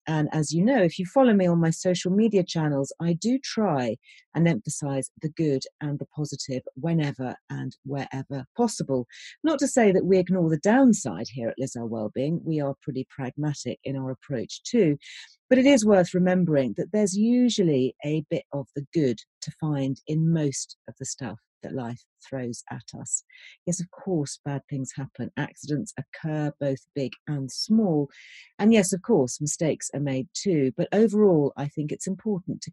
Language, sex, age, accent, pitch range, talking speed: English, female, 40-59, British, 135-190 Hz, 180 wpm